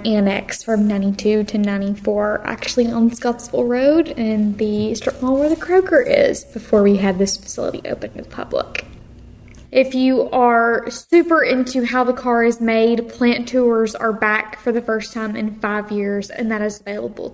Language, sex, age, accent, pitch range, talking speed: English, female, 10-29, American, 210-240 Hz, 175 wpm